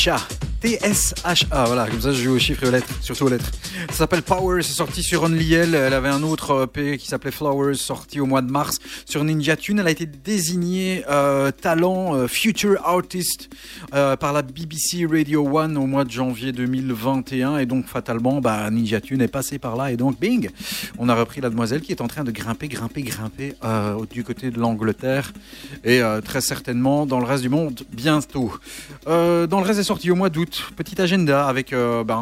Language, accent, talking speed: French, French, 210 wpm